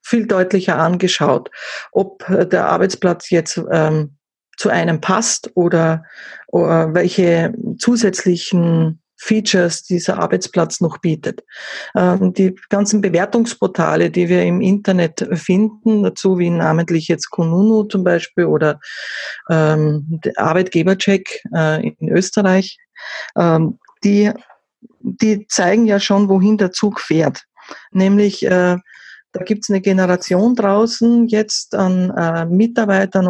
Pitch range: 175-205 Hz